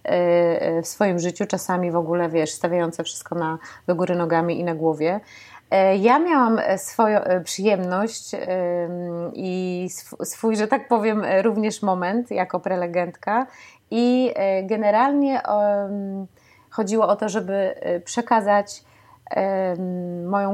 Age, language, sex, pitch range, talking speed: 30-49, Polish, female, 180-220 Hz, 110 wpm